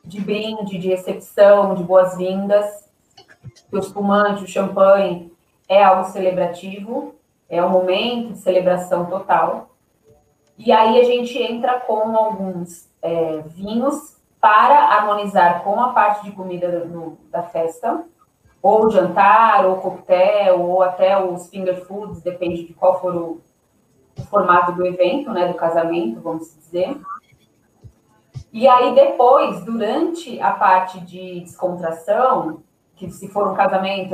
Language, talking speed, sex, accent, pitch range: Portuguese, 130 wpm, female, Brazilian, 175-210 Hz